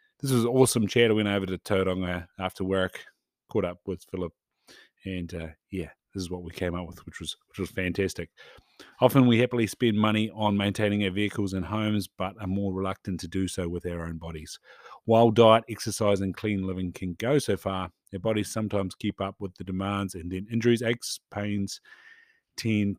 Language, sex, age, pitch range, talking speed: English, male, 30-49, 95-115 Hz, 200 wpm